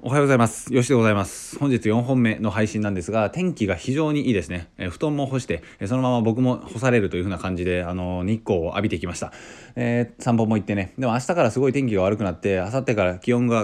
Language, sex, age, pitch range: Japanese, male, 20-39, 90-125 Hz